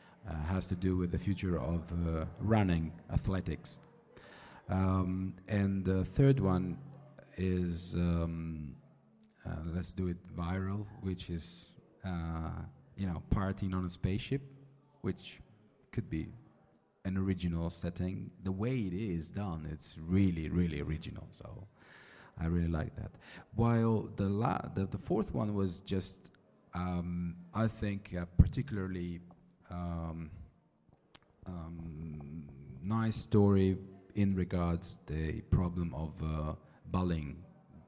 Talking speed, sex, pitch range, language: 120 wpm, male, 80-95 Hz, Italian